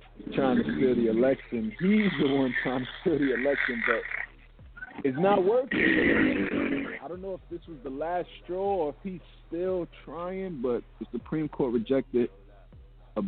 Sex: male